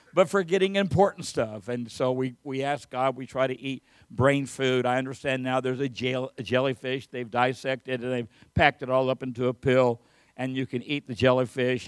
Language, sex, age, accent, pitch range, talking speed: English, male, 60-79, American, 120-135 Hz, 210 wpm